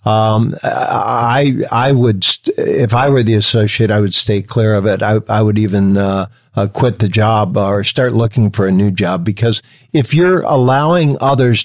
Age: 50-69